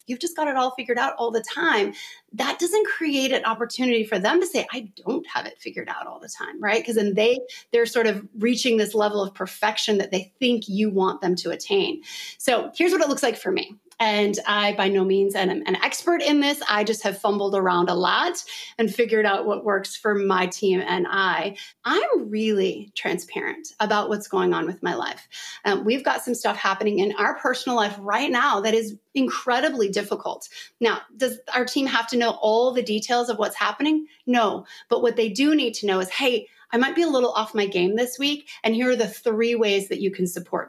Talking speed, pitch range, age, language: 225 wpm, 200-255 Hz, 30-49, English